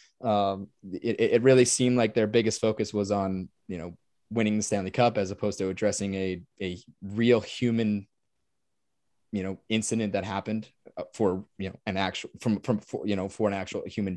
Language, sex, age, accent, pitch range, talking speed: English, male, 20-39, American, 105-120 Hz, 185 wpm